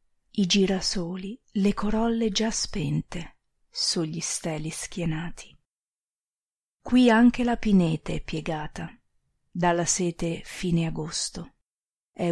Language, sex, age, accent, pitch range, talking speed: Italian, female, 30-49, native, 160-205 Hz, 95 wpm